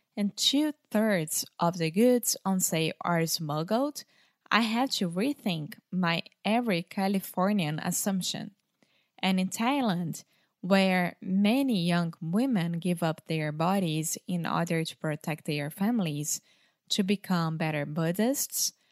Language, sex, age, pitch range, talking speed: Portuguese, female, 20-39, 175-220 Hz, 120 wpm